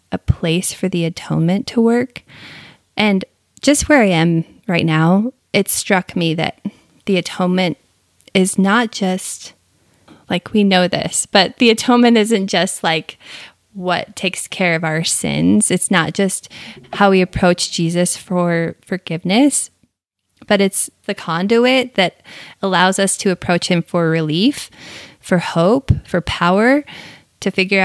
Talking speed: 140 wpm